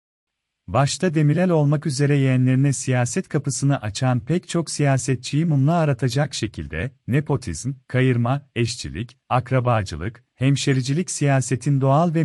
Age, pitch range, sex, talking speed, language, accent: 40-59, 125-155 Hz, male, 110 wpm, Turkish, native